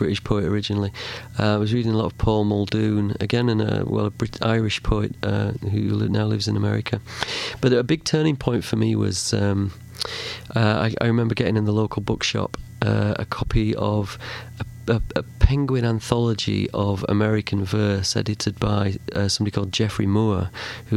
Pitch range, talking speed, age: 100-115 Hz, 185 wpm, 40-59